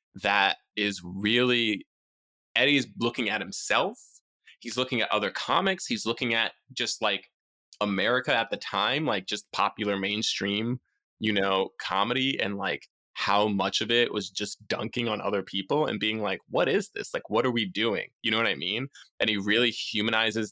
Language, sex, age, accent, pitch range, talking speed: English, male, 20-39, American, 105-130 Hz, 175 wpm